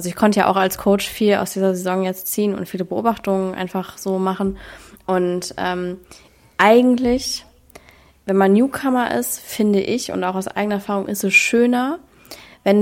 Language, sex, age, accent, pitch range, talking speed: German, female, 20-39, German, 185-215 Hz, 175 wpm